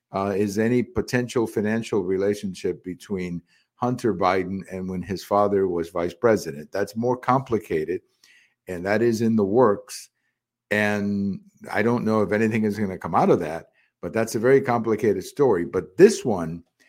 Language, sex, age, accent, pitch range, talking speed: English, male, 50-69, American, 100-125 Hz, 165 wpm